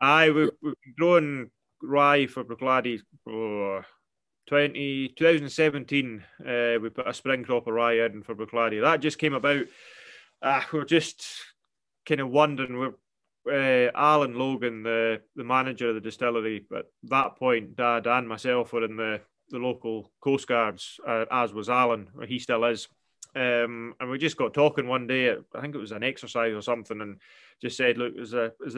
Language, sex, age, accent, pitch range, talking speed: English, male, 20-39, British, 115-140 Hz, 175 wpm